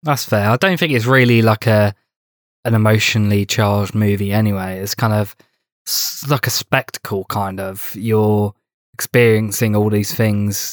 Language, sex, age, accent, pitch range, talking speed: English, male, 20-39, British, 100-115 Hz, 150 wpm